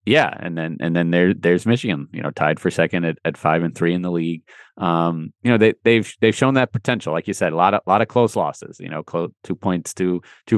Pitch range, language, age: 85-110 Hz, English, 30-49